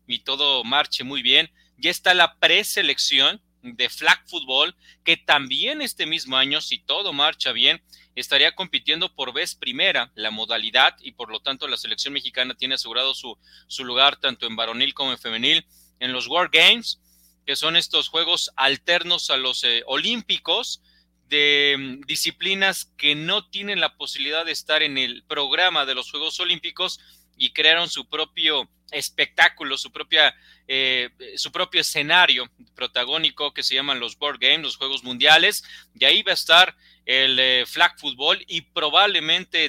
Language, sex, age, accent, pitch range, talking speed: Spanish, male, 30-49, Mexican, 125-160 Hz, 160 wpm